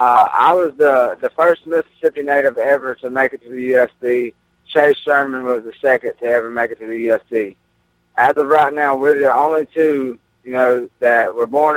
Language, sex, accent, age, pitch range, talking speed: English, male, American, 20-39, 125-145 Hz, 205 wpm